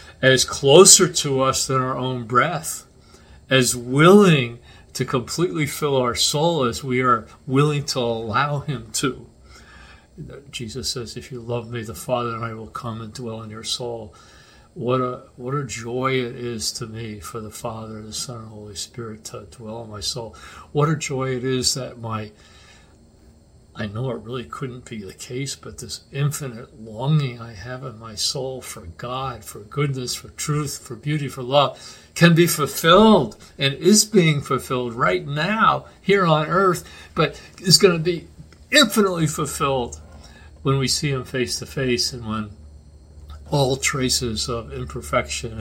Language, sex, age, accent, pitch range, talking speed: English, male, 50-69, American, 110-140 Hz, 170 wpm